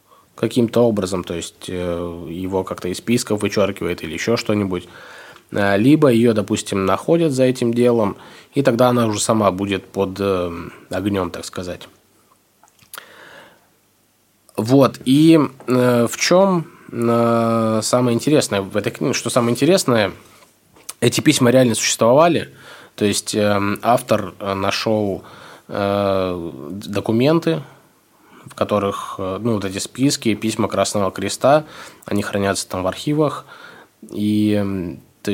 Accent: native